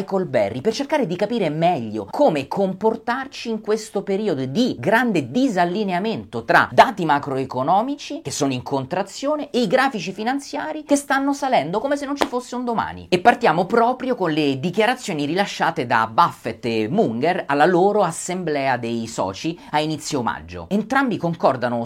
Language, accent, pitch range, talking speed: Italian, native, 145-225 Hz, 155 wpm